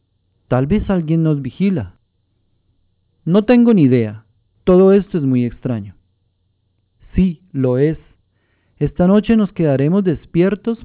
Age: 40-59